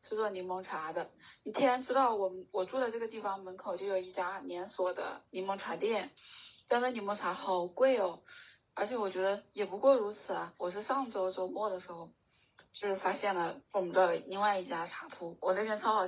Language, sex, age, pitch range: Chinese, female, 20-39, 185-210 Hz